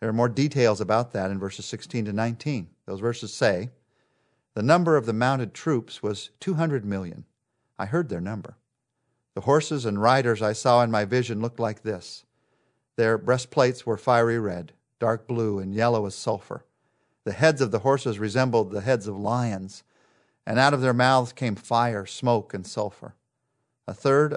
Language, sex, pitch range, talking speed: English, male, 110-130 Hz, 175 wpm